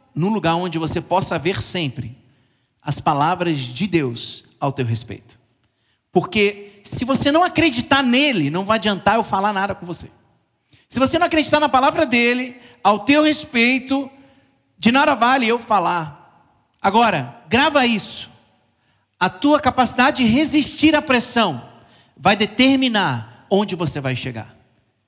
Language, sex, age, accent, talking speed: Portuguese, male, 40-59, Brazilian, 140 wpm